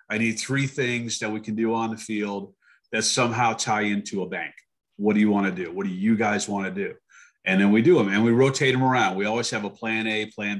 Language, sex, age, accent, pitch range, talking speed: English, male, 40-59, American, 105-125 Hz, 265 wpm